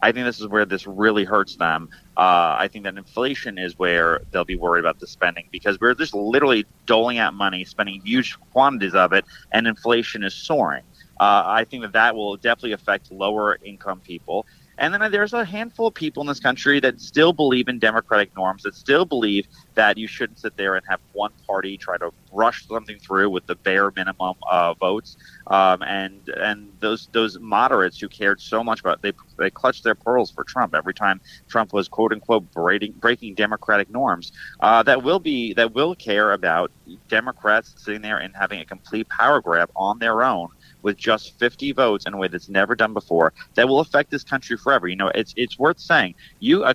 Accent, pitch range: American, 100-125 Hz